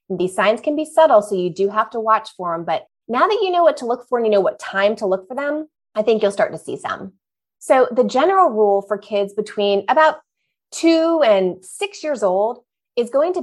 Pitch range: 195-270 Hz